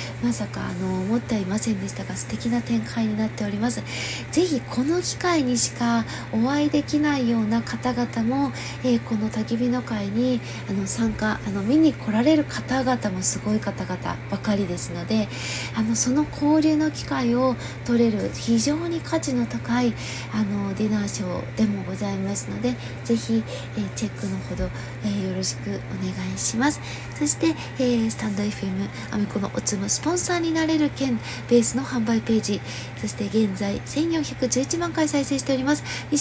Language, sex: Japanese, female